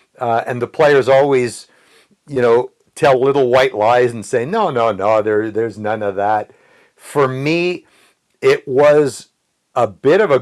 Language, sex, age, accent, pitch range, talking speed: English, male, 60-79, American, 120-155 Hz, 160 wpm